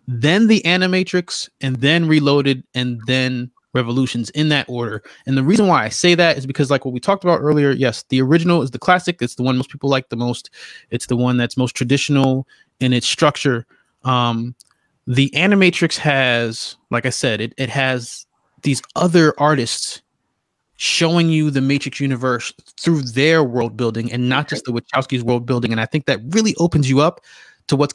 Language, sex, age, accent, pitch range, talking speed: English, male, 20-39, American, 125-155 Hz, 190 wpm